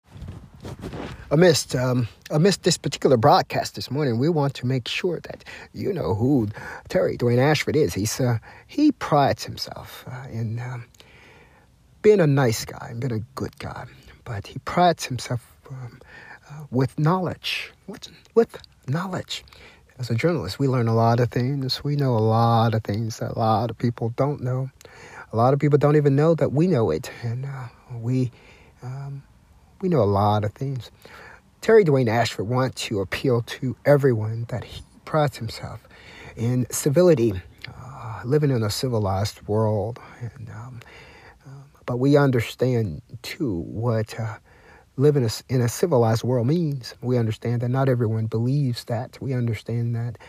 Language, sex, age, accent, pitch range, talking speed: English, male, 50-69, American, 115-140 Hz, 165 wpm